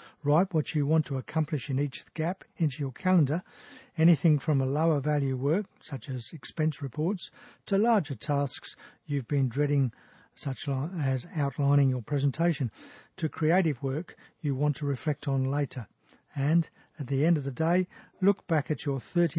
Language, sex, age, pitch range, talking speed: English, male, 50-69, 140-160 Hz, 165 wpm